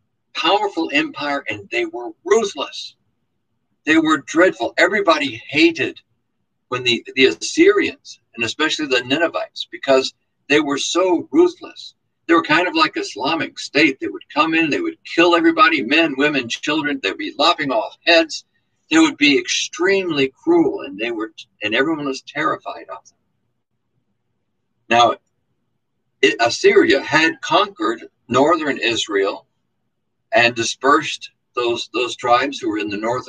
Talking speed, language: 140 wpm, English